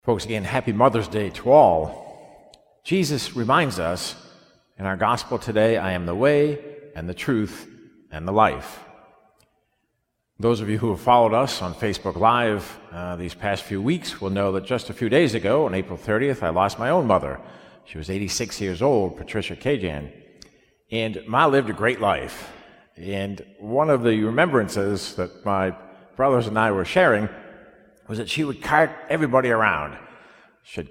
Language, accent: English, American